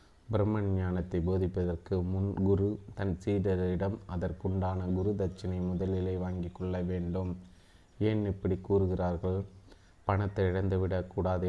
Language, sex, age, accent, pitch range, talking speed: Tamil, male, 30-49, native, 90-95 Hz, 90 wpm